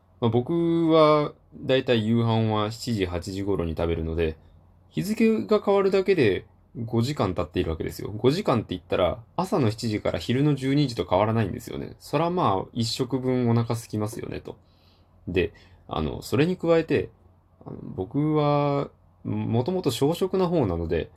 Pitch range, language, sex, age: 90-140 Hz, Japanese, male, 20-39